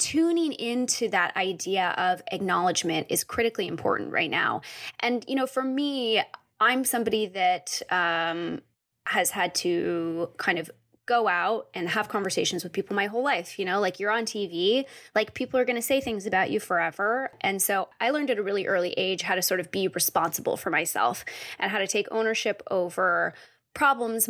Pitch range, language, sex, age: 190-255 Hz, English, female, 20-39